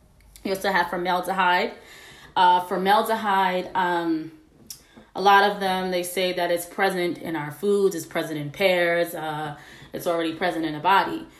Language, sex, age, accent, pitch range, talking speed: English, female, 20-39, American, 170-205 Hz, 160 wpm